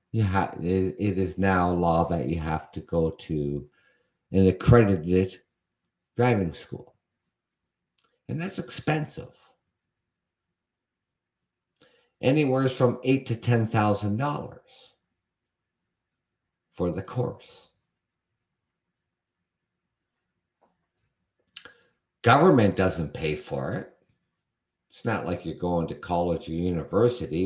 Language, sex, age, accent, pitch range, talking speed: English, male, 60-79, American, 80-115 Hz, 90 wpm